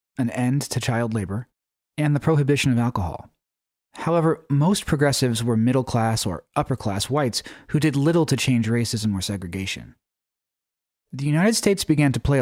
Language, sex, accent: English, male, American